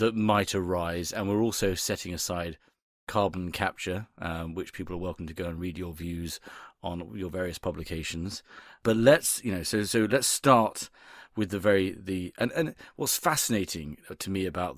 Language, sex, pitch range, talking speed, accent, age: English, male, 90-105 Hz, 180 wpm, British, 30-49